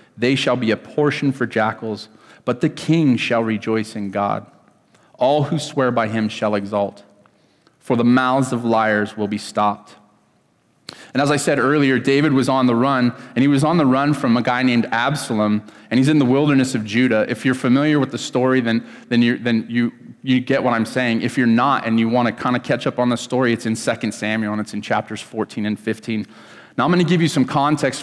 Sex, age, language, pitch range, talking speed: male, 30-49, English, 110-130 Hz, 225 wpm